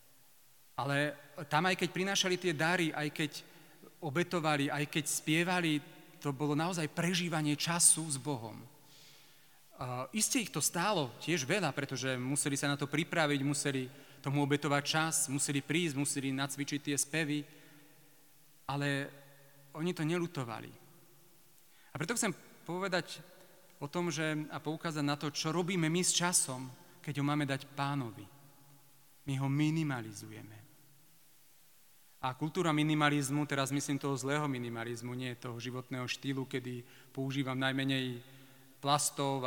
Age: 40-59